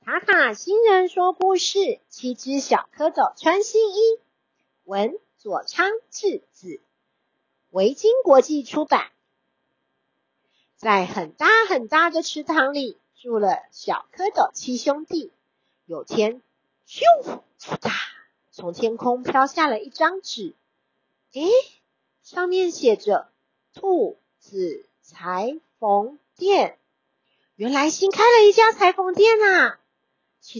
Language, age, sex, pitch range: Chinese, 50-69, female, 250-370 Hz